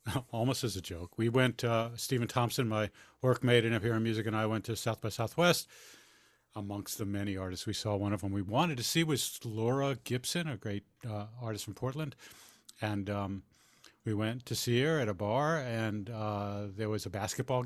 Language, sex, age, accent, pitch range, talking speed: English, male, 50-69, American, 110-135 Hz, 205 wpm